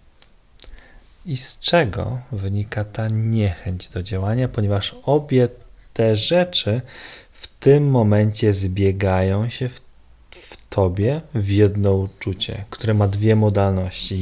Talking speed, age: 115 wpm, 40-59